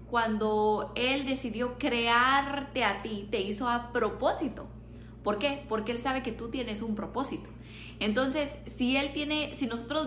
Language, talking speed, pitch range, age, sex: Spanish, 155 wpm, 215-265 Hz, 20-39, female